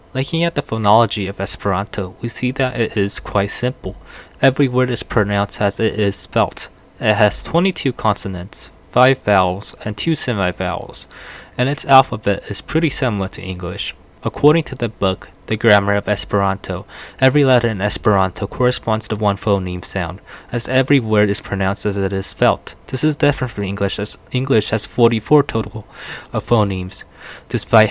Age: 20-39